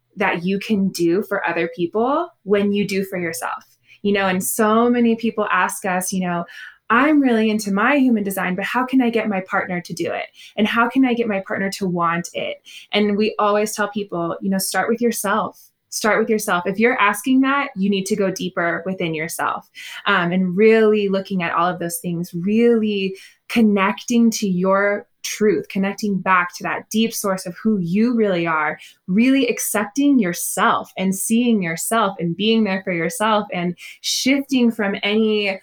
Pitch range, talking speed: 180-225 Hz, 190 wpm